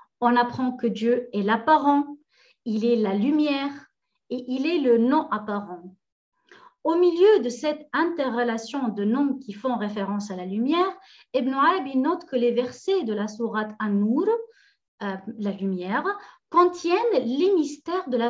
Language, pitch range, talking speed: French, 225-310 Hz, 150 wpm